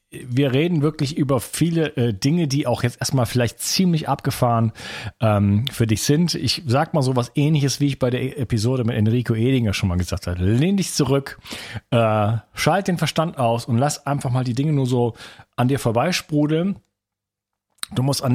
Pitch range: 115-145 Hz